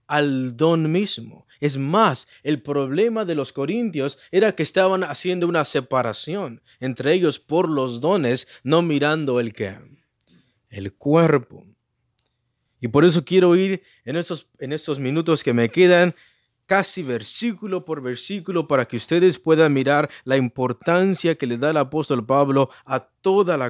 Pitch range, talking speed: 130-190 Hz, 155 wpm